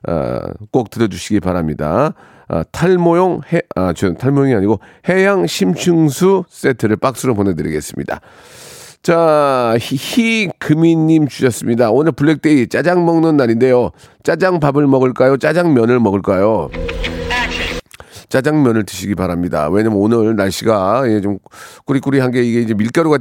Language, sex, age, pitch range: Korean, male, 40-59, 105-150 Hz